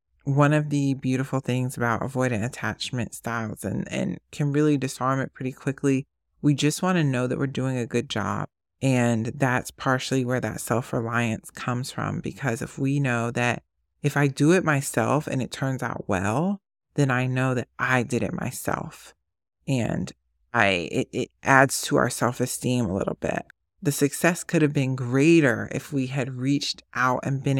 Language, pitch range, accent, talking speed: English, 120-145 Hz, American, 180 wpm